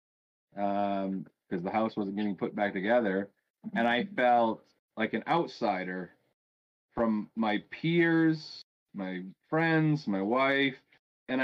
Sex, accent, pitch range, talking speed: male, American, 100-125 Hz, 120 wpm